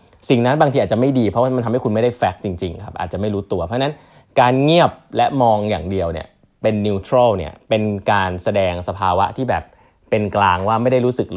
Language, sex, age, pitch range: Thai, male, 20-39, 95-120 Hz